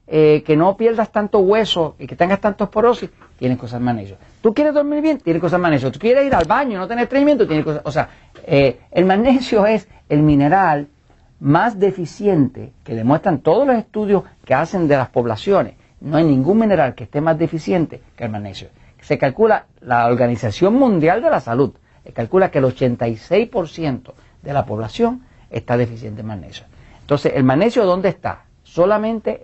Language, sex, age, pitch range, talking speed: Spanish, male, 50-69, 125-195 Hz, 185 wpm